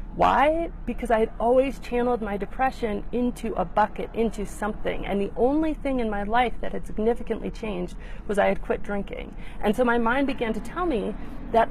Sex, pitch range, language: female, 205-255 Hz, English